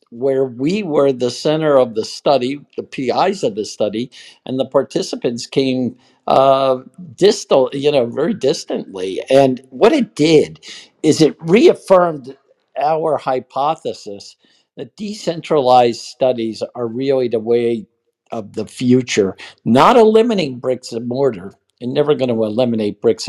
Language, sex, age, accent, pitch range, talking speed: English, male, 50-69, American, 120-150 Hz, 135 wpm